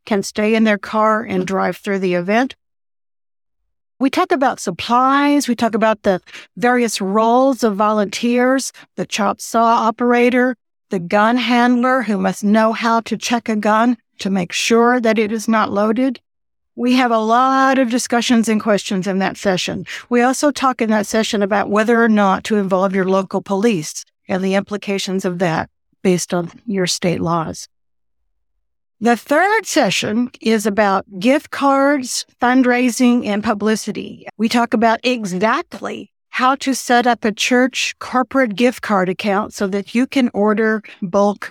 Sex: female